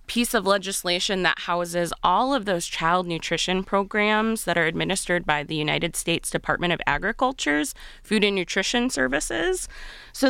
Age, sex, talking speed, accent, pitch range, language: 20-39, female, 150 wpm, American, 175-230 Hz, English